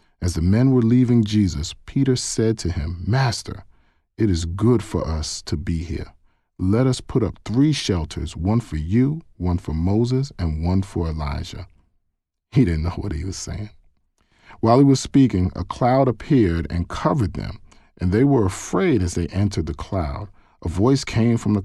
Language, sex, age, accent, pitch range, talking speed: English, male, 40-59, American, 85-115 Hz, 185 wpm